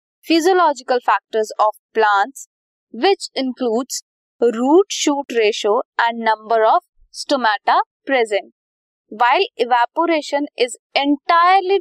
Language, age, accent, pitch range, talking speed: Hindi, 20-39, native, 225-325 Hz, 90 wpm